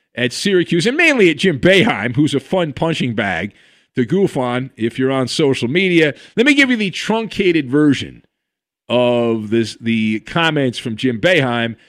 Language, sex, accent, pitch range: English, male, American, 140-215 Hz